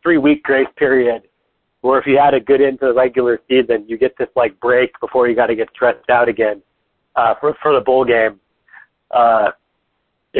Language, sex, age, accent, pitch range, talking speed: English, male, 40-59, American, 120-155 Hz, 195 wpm